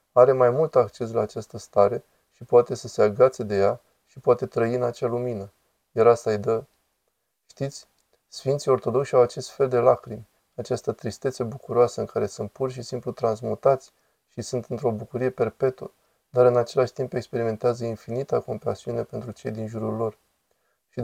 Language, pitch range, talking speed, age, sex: Romanian, 110-125 Hz, 170 wpm, 20-39, male